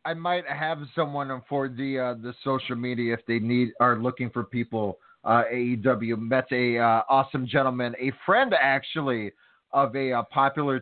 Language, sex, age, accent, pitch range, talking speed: English, male, 30-49, American, 120-145 Hz, 170 wpm